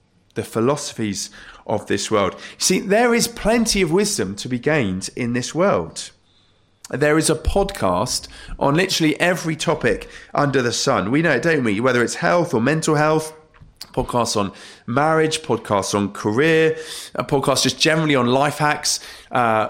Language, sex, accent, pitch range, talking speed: English, male, British, 125-185 Hz, 160 wpm